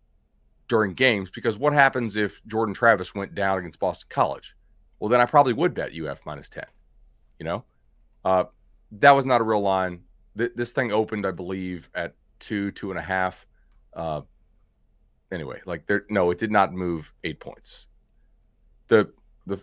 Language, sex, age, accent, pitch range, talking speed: English, male, 30-49, American, 90-115 Hz, 165 wpm